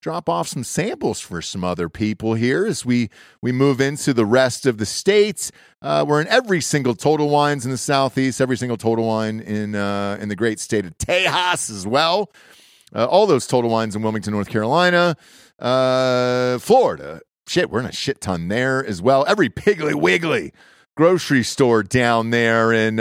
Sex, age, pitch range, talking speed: male, 40-59, 115-170 Hz, 185 wpm